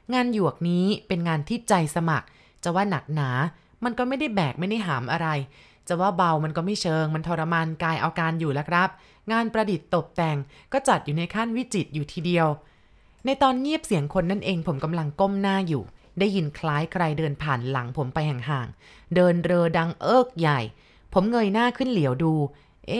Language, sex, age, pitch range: Thai, female, 20-39, 155-205 Hz